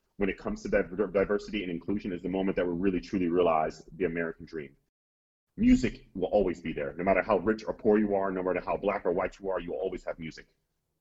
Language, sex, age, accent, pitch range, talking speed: English, male, 30-49, American, 90-125 Hz, 240 wpm